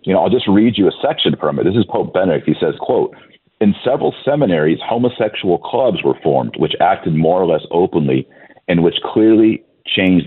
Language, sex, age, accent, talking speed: English, male, 50-69, American, 200 wpm